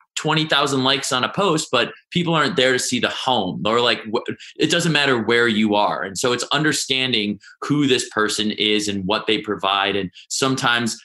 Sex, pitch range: male, 105-140 Hz